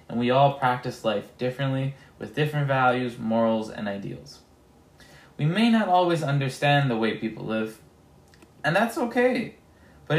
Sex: male